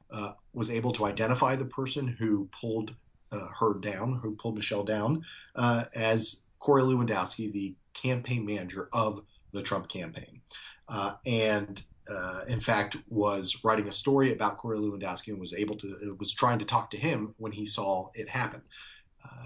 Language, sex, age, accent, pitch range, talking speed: English, male, 30-49, American, 105-130 Hz, 170 wpm